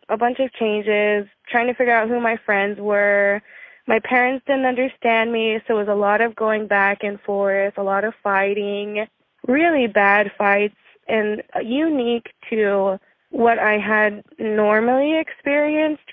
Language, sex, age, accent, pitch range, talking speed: English, female, 20-39, American, 205-255 Hz, 155 wpm